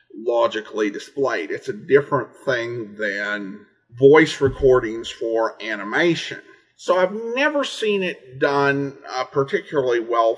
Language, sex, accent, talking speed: English, male, American, 115 wpm